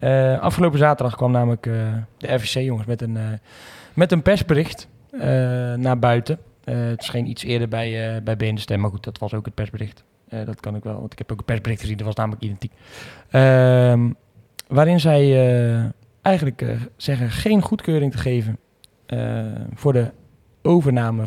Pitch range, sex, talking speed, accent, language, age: 115-135 Hz, male, 185 wpm, Dutch, Dutch, 20-39